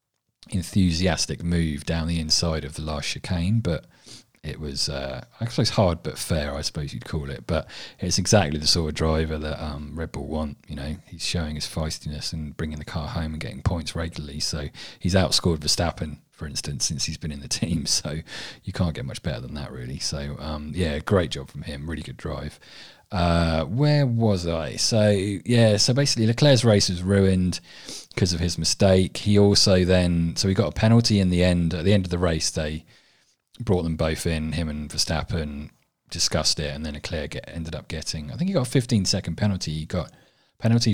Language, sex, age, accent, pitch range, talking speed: English, male, 30-49, British, 75-95 Hz, 205 wpm